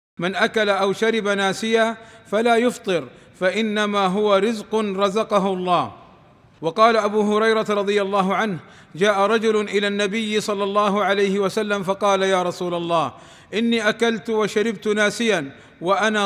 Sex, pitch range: male, 195-220 Hz